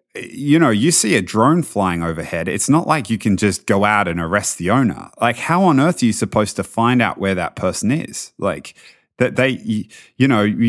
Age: 30-49